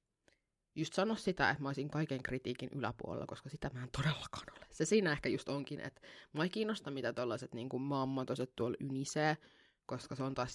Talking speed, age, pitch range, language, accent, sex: 190 wpm, 20-39, 135-165 Hz, Finnish, native, female